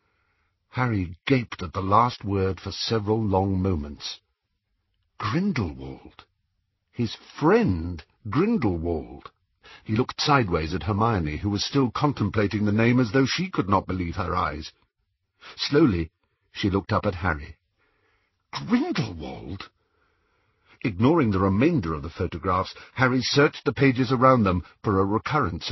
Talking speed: 130 wpm